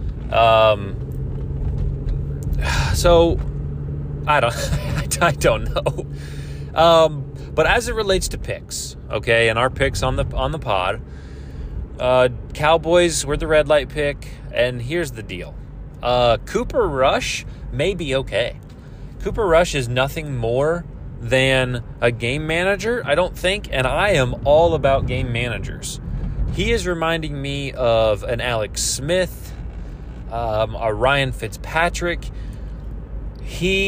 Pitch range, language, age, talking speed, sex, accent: 115-150 Hz, English, 30-49, 130 wpm, male, American